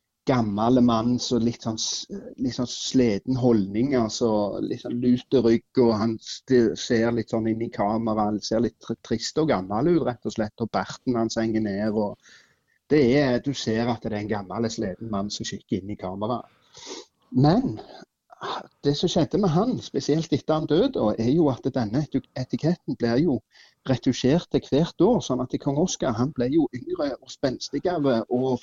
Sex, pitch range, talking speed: male, 115-140 Hz, 165 wpm